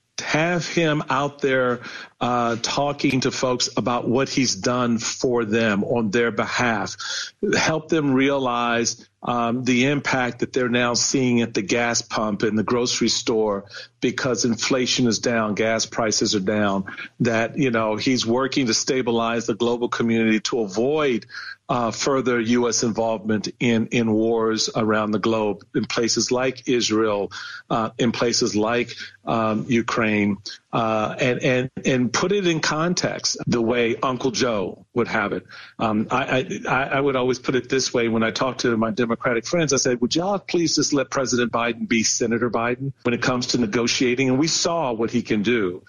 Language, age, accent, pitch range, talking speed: English, 40-59, American, 115-135 Hz, 170 wpm